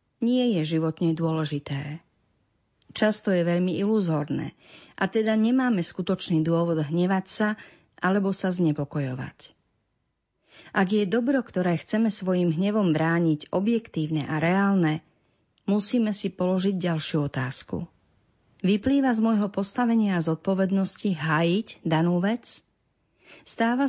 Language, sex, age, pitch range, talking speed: Slovak, female, 40-59, 165-215 Hz, 110 wpm